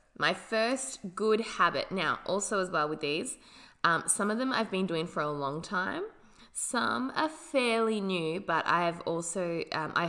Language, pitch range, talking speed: English, 160-205 Hz, 180 wpm